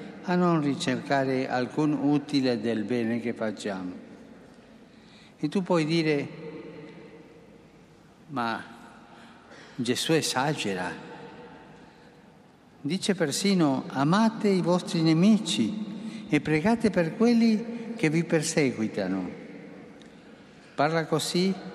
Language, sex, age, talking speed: Italian, male, 50-69, 85 wpm